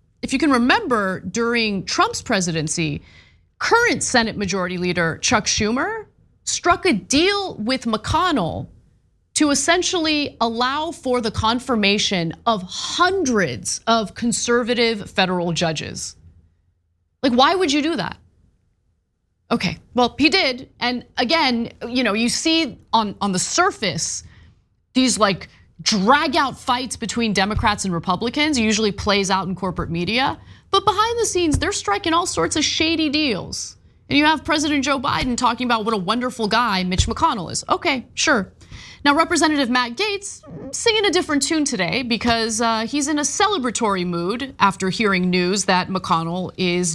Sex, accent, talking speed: female, American, 145 wpm